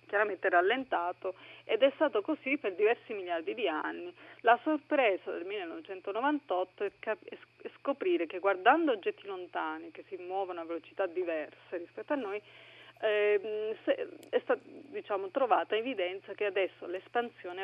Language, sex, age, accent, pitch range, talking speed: Italian, female, 30-49, native, 175-265 Hz, 135 wpm